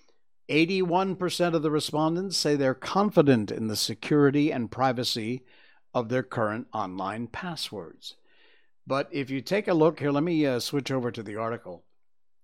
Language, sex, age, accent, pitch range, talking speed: English, male, 50-69, American, 120-175 Hz, 150 wpm